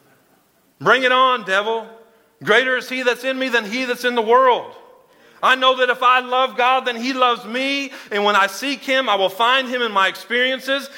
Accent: American